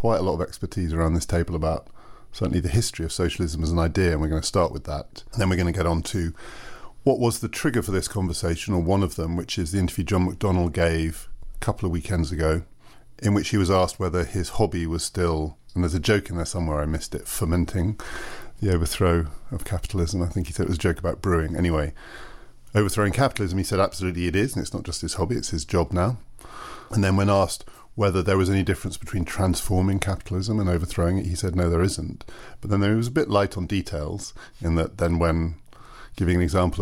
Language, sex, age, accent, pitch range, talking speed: English, male, 40-59, British, 85-95 Hz, 235 wpm